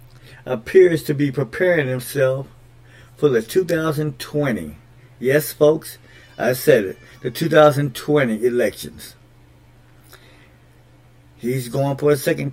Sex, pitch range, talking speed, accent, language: male, 120-150 Hz, 100 wpm, American, English